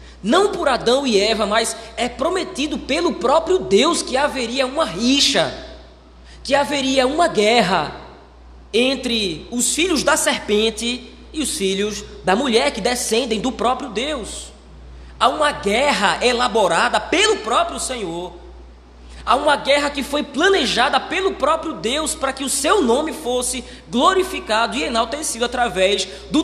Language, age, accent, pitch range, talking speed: Portuguese, 20-39, Brazilian, 190-280 Hz, 140 wpm